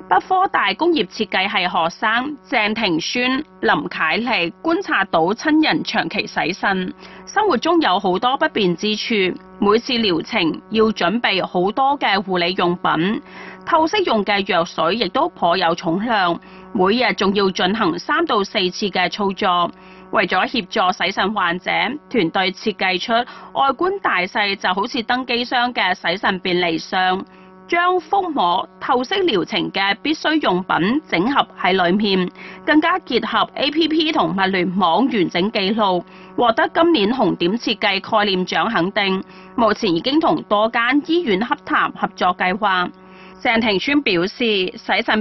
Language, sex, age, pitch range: Chinese, female, 30-49, 185-275 Hz